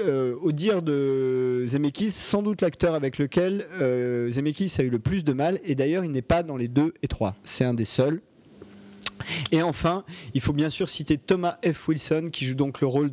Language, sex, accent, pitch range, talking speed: French, male, French, 125-170 Hz, 205 wpm